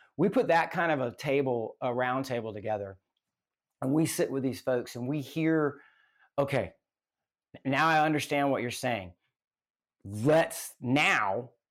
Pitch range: 130-155 Hz